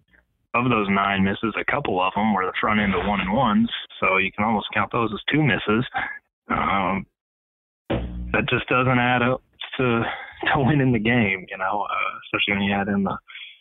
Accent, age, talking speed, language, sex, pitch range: American, 20-39, 195 wpm, English, male, 95-115 Hz